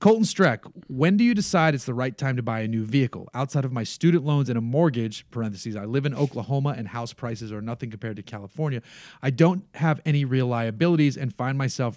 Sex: male